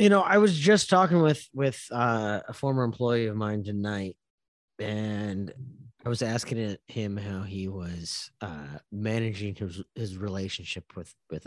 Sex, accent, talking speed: male, American, 155 wpm